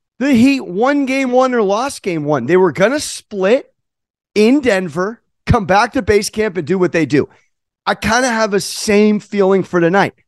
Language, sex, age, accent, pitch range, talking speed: English, male, 30-49, American, 180-255 Hz, 205 wpm